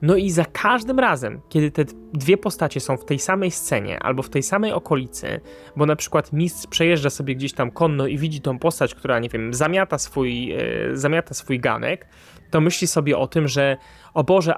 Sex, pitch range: male, 140-175 Hz